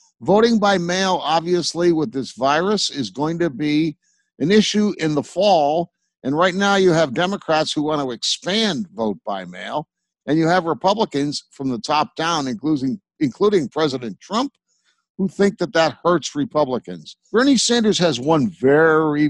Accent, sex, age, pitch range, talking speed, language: American, male, 60-79, 140-200 Hz, 160 wpm, English